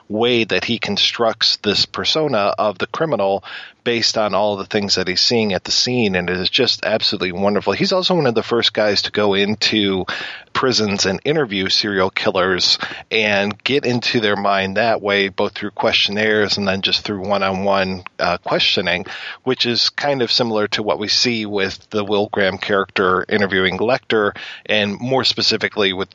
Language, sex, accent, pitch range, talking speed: English, male, American, 100-115 Hz, 180 wpm